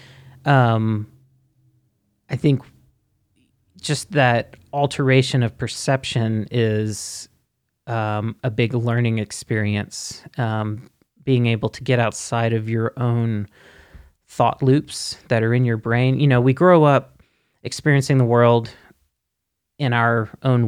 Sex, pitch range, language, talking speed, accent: male, 110-135 Hz, English, 120 wpm, American